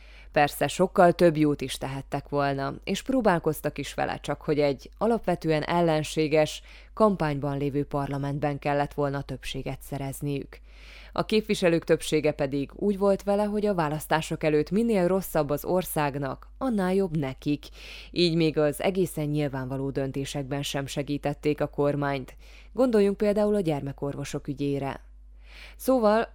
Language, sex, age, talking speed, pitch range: Hungarian, female, 20-39, 130 wpm, 140-175 Hz